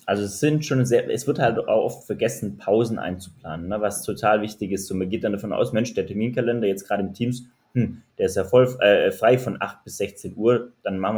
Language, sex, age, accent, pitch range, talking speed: German, male, 20-39, German, 100-120 Hz, 230 wpm